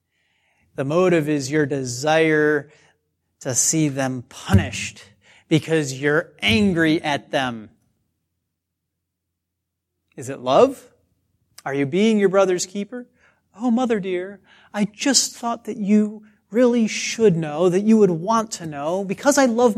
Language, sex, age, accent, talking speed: English, male, 30-49, American, 130 wpm